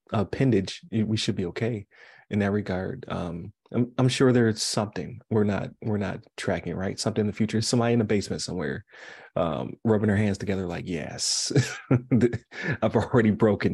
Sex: male